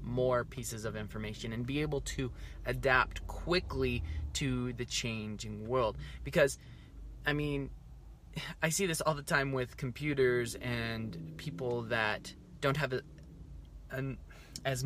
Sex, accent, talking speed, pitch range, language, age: male, American, 135 wpm, 125-165 Hz, English, 20-39